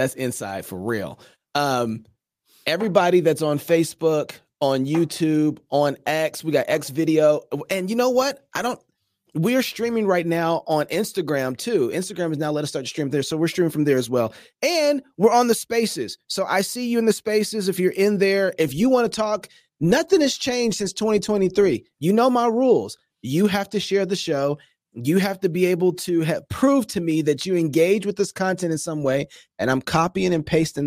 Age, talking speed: 30-49, 210 wpm